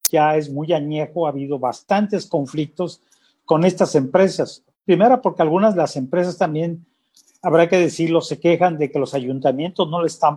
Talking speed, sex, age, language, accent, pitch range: 175 wpm, male, 40-59, Spanish, Mexican, 145-180 Hz